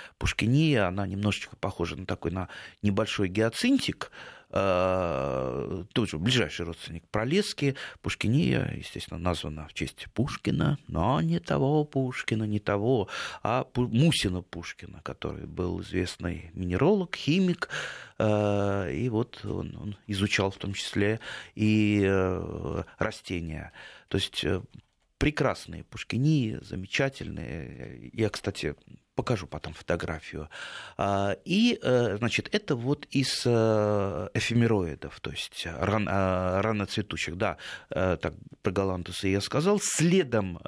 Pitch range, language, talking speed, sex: 95-125 Hz, Russian, 105 wpm, male